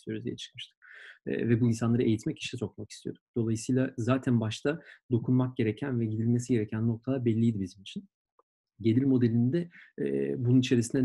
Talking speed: 150 wpm